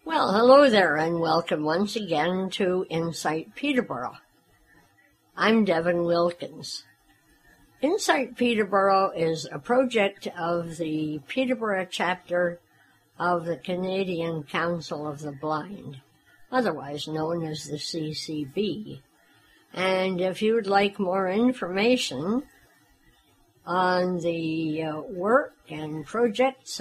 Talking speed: 105 wpm